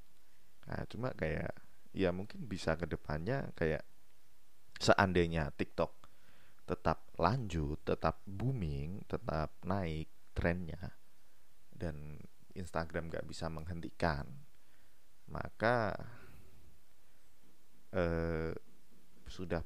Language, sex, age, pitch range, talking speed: Indonesian, male, 30-49, 80-95 Hz, 75 wpm